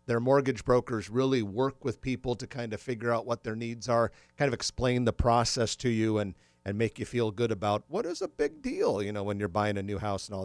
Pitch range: 110-140 Hz